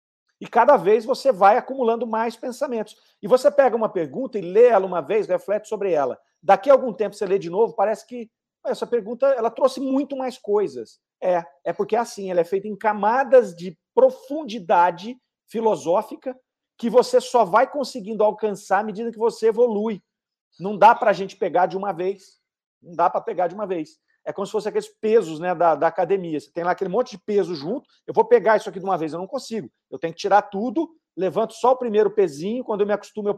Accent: Brazilian